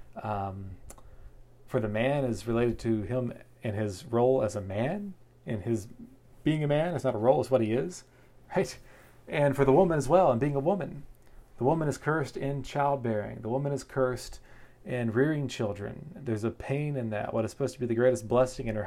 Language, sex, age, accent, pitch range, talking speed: English, male, 30-49, American, 110-135 Hz, 210 wpm